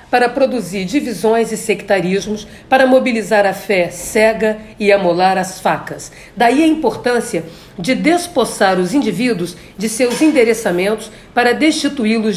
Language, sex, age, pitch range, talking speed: Portuguese, female, 50-69, 200-260 Hz, 125 wpm